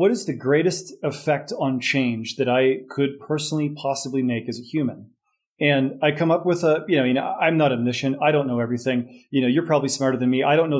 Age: 30-49